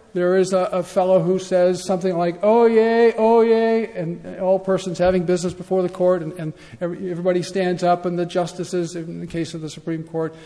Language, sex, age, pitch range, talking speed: English, male, 50-69, 145-190 Hz, 210 wpm